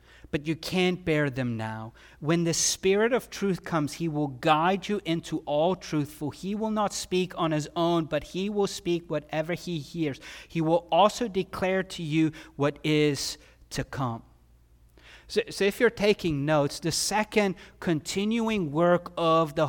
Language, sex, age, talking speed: English, male, 30-49, 170 wpm